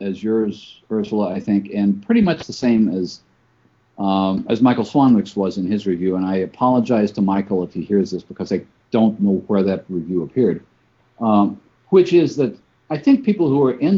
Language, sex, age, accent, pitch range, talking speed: English, male, 50-69, American, 105-150 Hz, 200 wpm